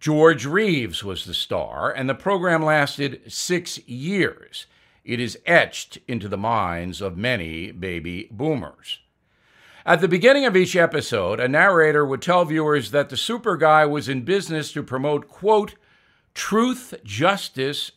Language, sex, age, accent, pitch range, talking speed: English, male, 60-79, American, 130-170 Hz, 145 wpm